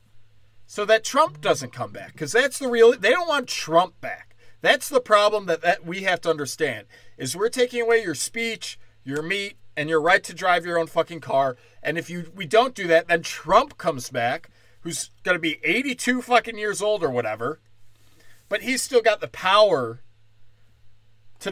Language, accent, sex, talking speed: English, American, male, 190 wpm